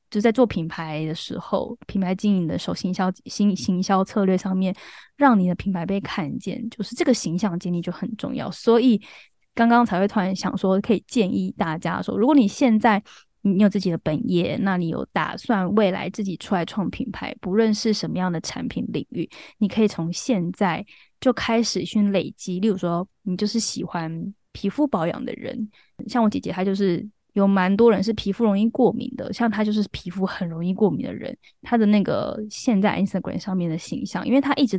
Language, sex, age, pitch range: Chinese, female, 10-29, 185-230 Hz